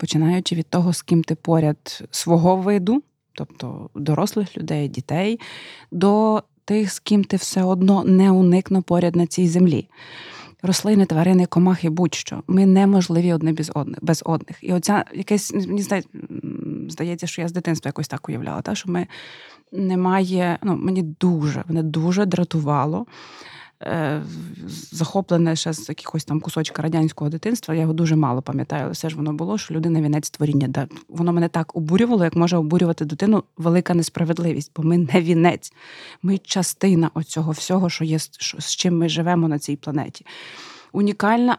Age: 20-39